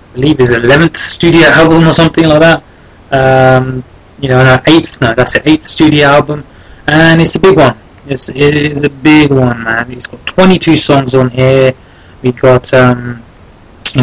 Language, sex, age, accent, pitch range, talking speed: English, male, 20-39, British, 120-145 Hz, 180 wpm